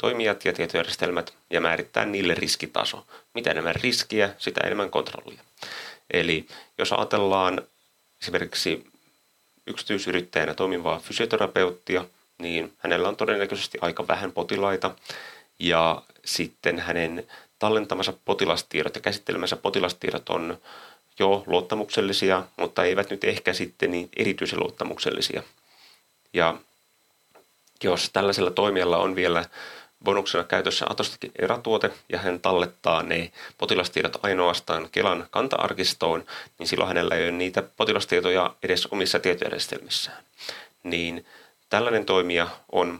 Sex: male